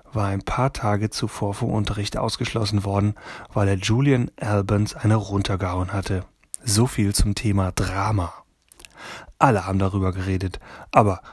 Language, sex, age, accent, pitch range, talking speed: German, male, 30-49, German, 100-120 Hz, 140 wpm